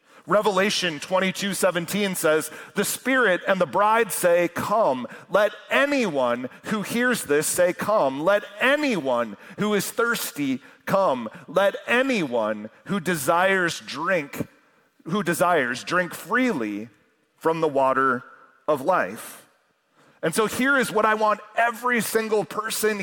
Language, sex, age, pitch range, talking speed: English, male, 40-59, 165-220 Hz, 120 wpm